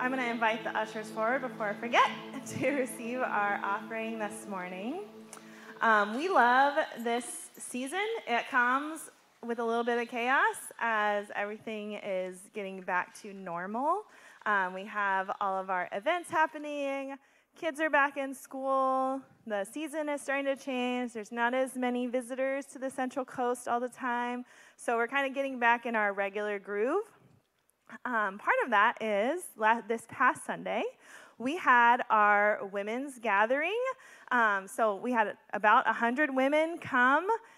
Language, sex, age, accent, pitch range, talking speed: English, female, 20-39, American, 220-275 Hz, 155 wpm